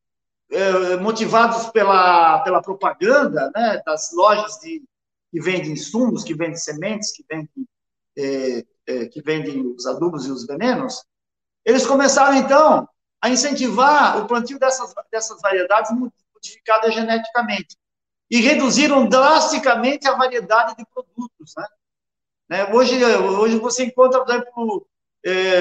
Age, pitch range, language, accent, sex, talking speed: 50-69, 200-275 Hz, Portuguese, Brazilian, male, 125 wpm